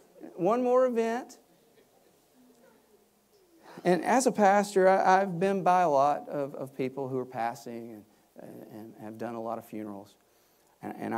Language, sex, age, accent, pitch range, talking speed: English, male, 50-69, American, 105-130 Hz, 135 wpm